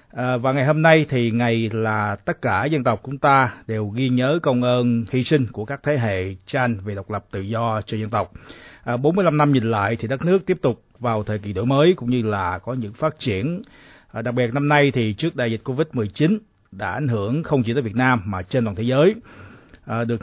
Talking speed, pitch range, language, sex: 245 wpm, 110-135 Hz, Vietnamese, male